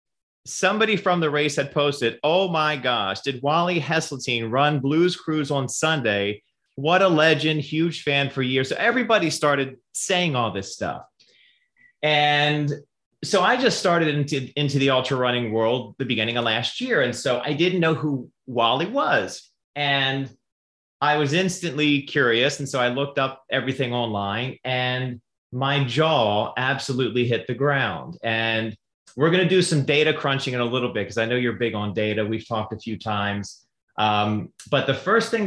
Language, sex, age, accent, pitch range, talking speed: English, male, 30-49, American, 120-160 Hz, 175 wpm